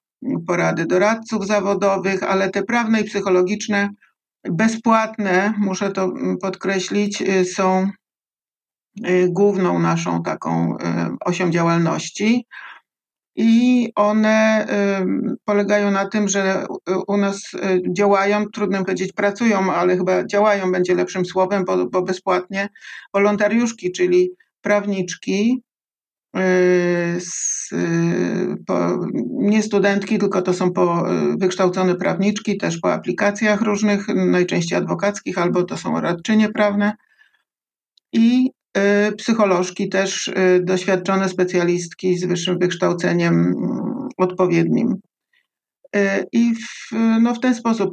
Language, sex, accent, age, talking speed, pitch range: German, male, Polish, 50-69, 90 wpm, 180-210 Hz